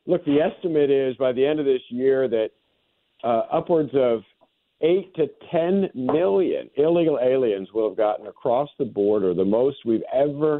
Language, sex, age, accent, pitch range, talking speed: English, male, 50-69, American, 115-160 Hz, 170 wpm